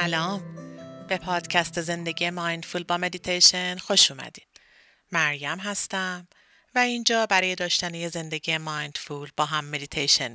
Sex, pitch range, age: female, 160-185 Hz, 40-59